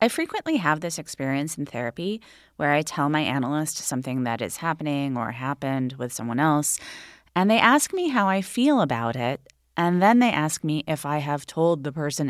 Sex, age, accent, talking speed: female, 30-49, American, 200 wpm